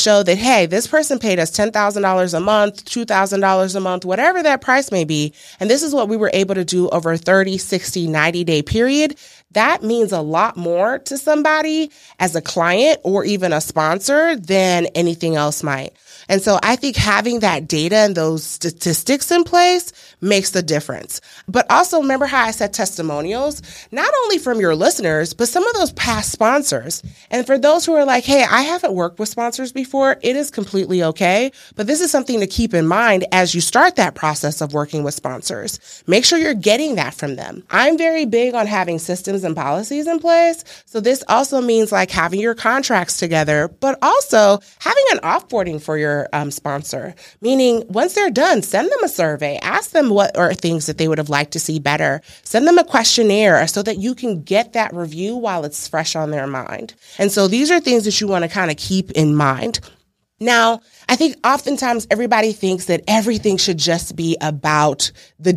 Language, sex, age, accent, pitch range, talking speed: English, female, 30-49, American, 165-255 Hz, 200 wpm